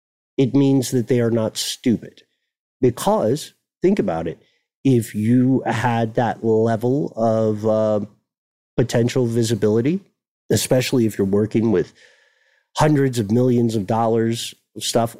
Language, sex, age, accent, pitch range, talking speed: English, male, 50-69, American, 110-140 Hz, 125 wpm